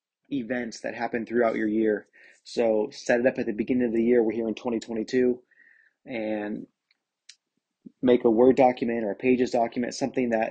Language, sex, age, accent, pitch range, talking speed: English, male, 30-49, American, 115-130 Hz, 175 wpm